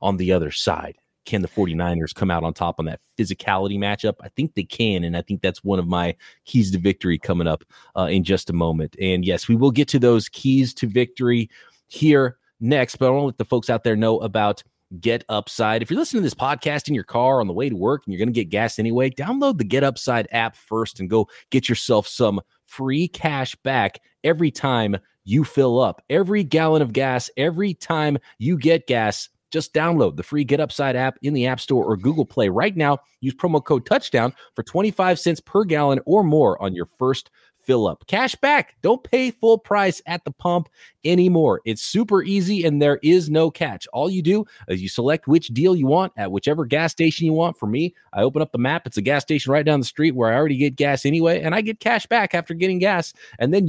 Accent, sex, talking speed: American, male, 230 wpm